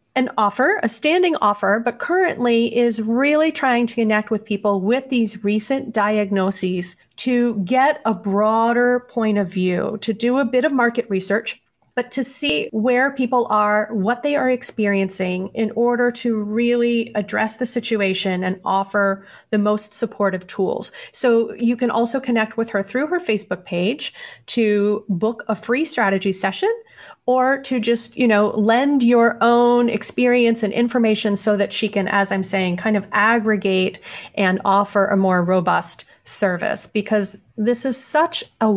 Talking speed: 160 wpm